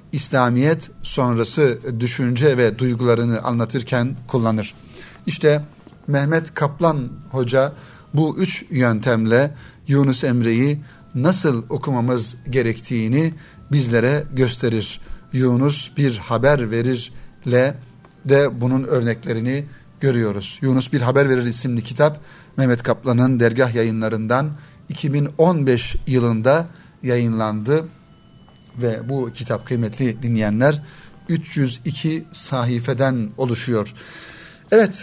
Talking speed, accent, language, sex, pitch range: 85 wpm, native, Turkish, male, 120-150 Hz